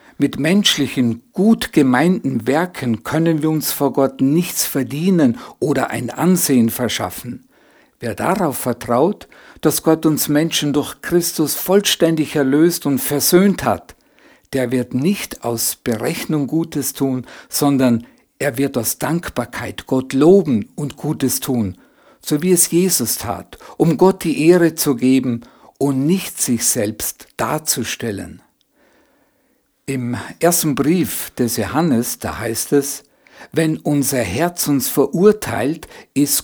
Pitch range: 125-165 Hz